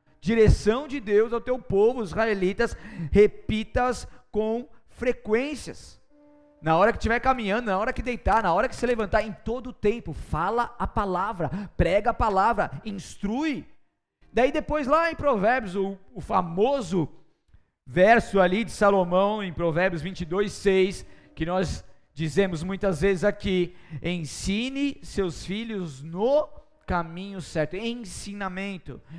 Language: Portuguese